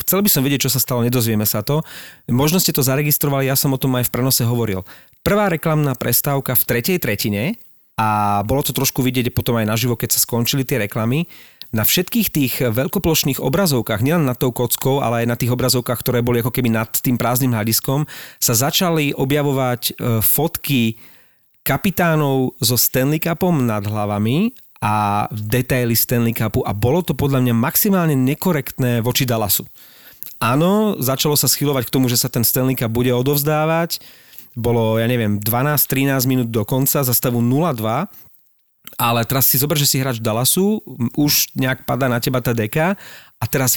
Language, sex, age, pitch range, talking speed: Slovak, male, 40-59, 120-145 Hz, 175 wpm